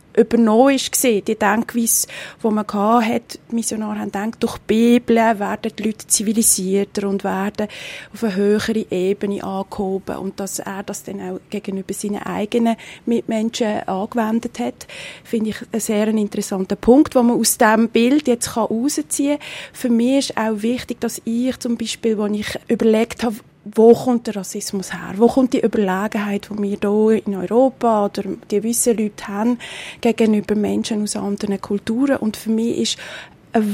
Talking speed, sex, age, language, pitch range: 165 wpm, female, 30-49, German, 205-240 Hz